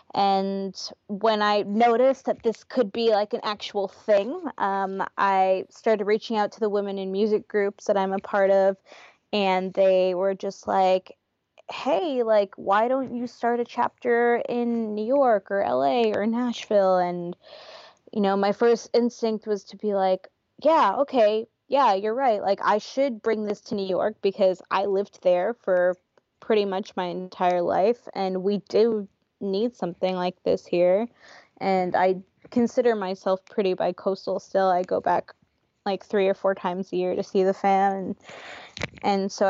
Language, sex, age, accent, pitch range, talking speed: English, female, 20-39, American, 190-225 Hz, 170 wpm